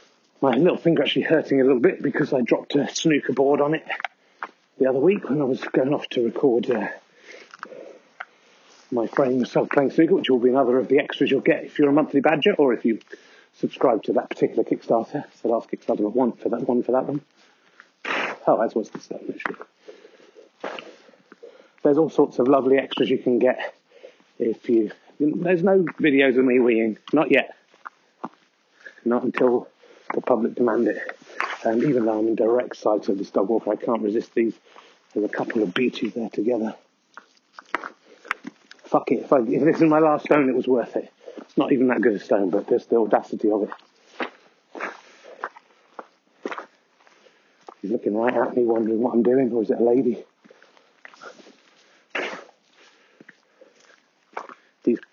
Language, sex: English, male